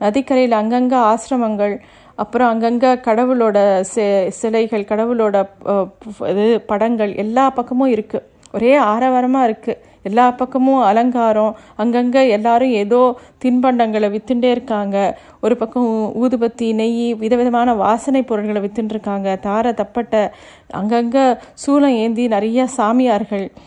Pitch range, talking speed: 215-255 Hz, 105 wpm